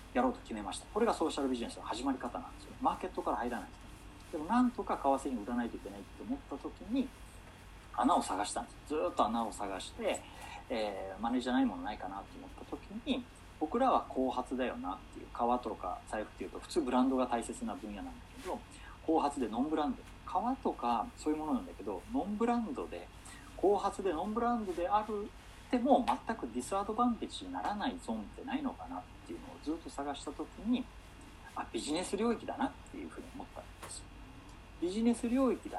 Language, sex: Japanese, male